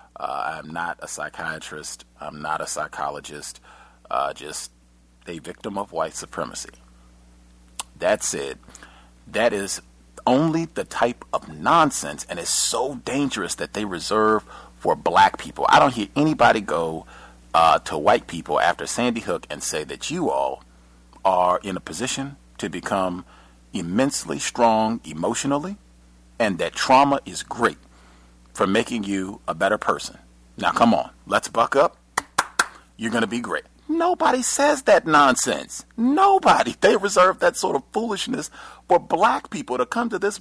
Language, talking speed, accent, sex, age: English, 150 wpm, American, male, 40-59